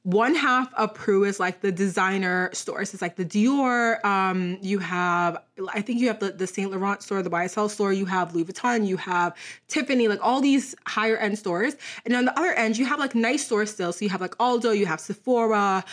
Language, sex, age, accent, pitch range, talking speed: English, female, 20-39, American, 195-250 Hz, 225 wpm